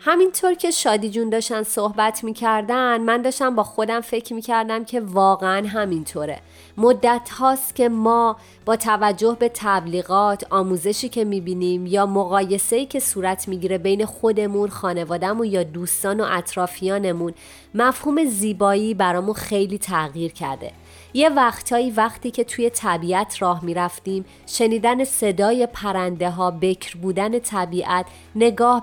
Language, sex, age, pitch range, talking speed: Persian, female, 30-49, 190-235 Hz, 125 wpm